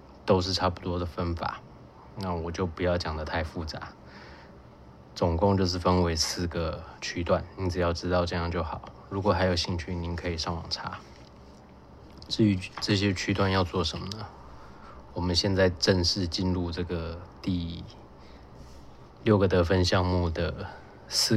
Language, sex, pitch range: Chinese, male, 80-95 Hz